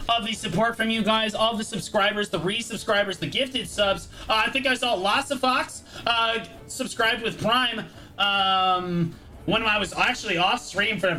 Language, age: English, 30-49